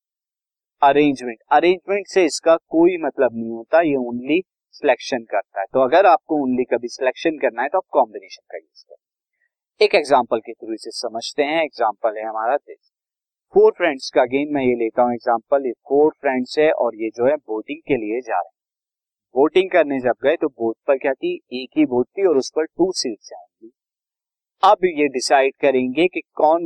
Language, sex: Hindi, male